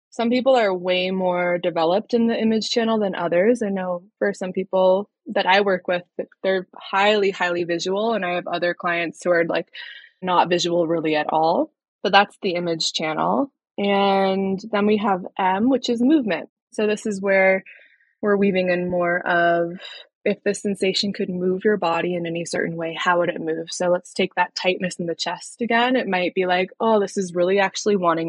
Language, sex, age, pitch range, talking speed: English, female, 20-39, 180-215 Hz, 200 wpm